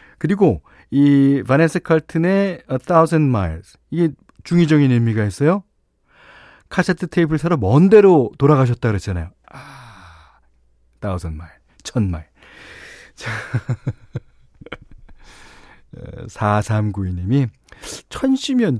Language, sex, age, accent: Korean, male, 40-59, native